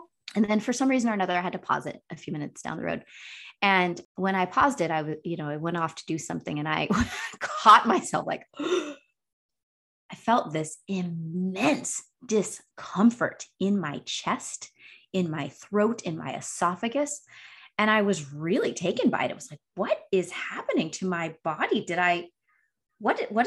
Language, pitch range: English, 170-225 Hz